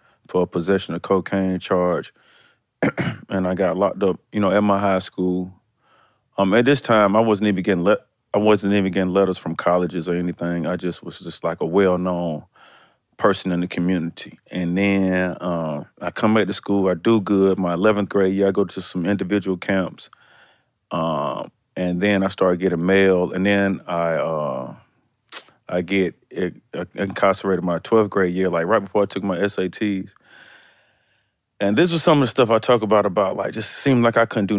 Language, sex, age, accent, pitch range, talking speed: English, male, 30-49, American, 90-100 Hz, 190 wpm